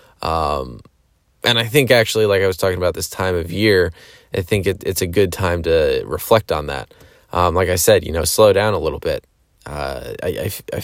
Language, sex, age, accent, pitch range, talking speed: English, male, 20-39, American, 90-140 Hz, 210 wpm